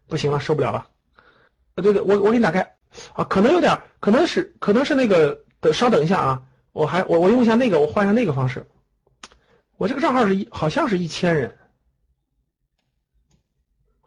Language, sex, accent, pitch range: Chinese, male, native, 145-215 Hz